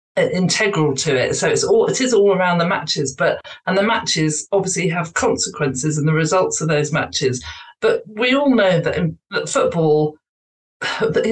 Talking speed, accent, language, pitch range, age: 180 wpm, British, English, 160-230 Hz, 50-69